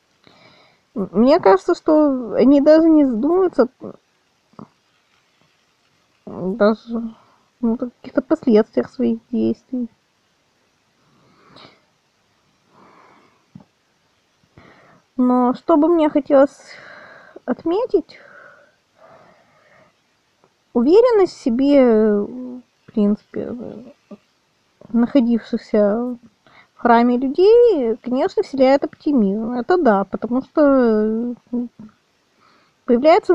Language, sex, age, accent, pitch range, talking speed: Russian, female, 20-39, native, 225-305 Hz, 65 wpm